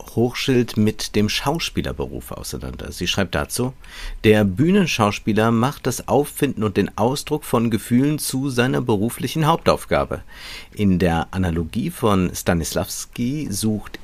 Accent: German